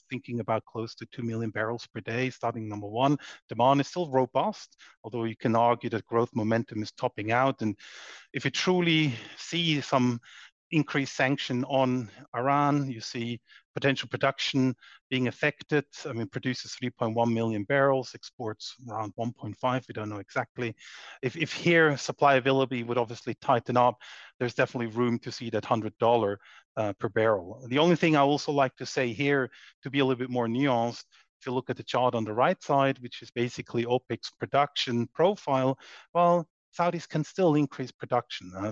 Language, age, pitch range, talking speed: English, 30-49, 115-135 Hz, 175 wpm